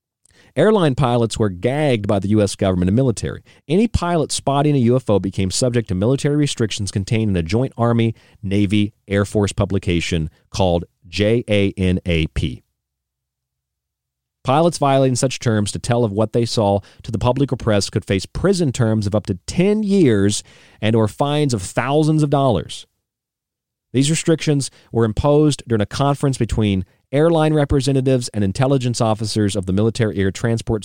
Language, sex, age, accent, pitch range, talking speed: English, male, 40-59, American, 90-120 Hz, 150 wpm